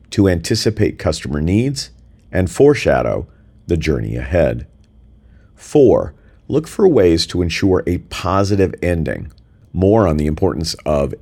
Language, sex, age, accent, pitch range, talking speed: English, male, 50-69, American, 80-105 Hz, 125 wpm